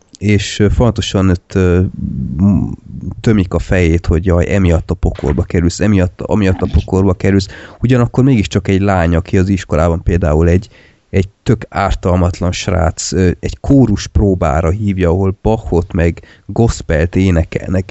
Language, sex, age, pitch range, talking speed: Hungarian, male, 30-49, 85-100 Hz, 130 wpm